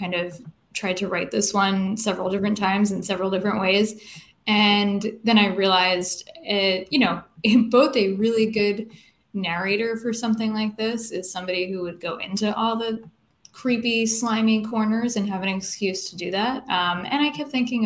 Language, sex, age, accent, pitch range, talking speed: English, female, 20-39, American, 185-220 Hz, 180 wpm